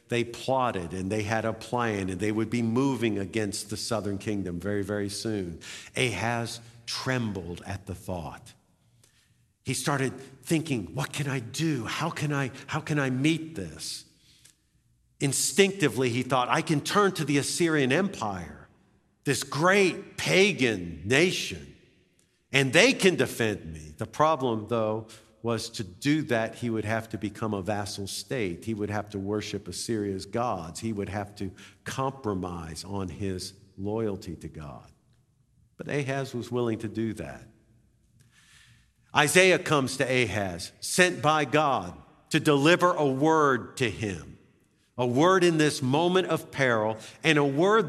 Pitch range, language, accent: 105-140 Hz, English, American